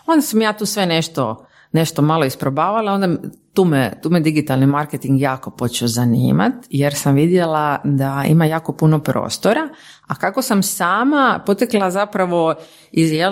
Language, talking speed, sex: Croatian, 155 wpm, female